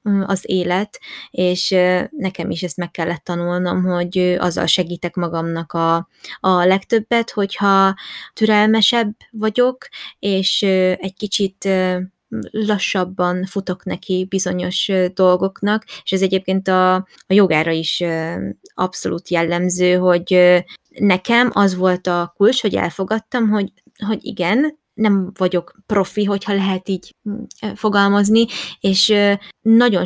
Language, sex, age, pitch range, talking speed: Hungarian, female, 20-39, 180-210 Hz, 110 wpm